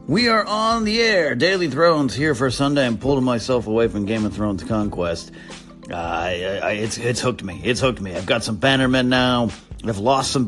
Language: English